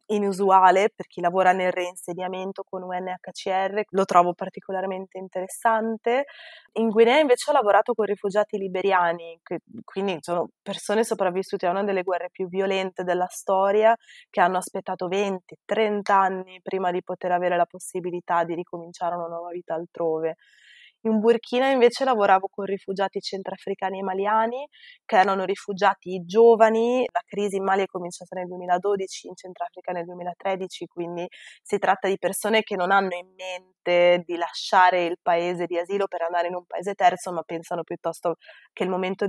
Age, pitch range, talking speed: 20-39, 180-210 Hz, 155 wpm